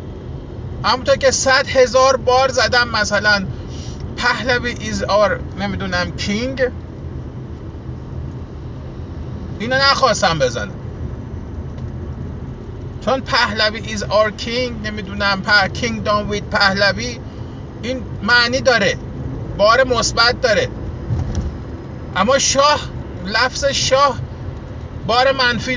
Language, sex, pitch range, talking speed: Persian, male, 245-285 Hz, 80 wpm